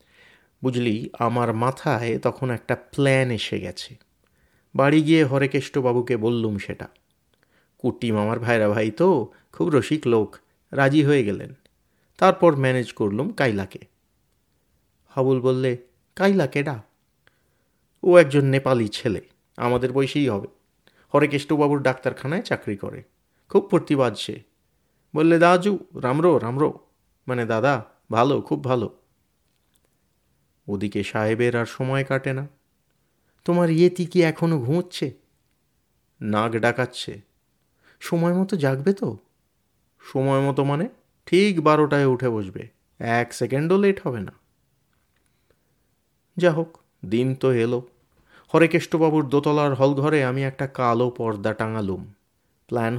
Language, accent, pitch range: Bengali, native, 115-150 Hz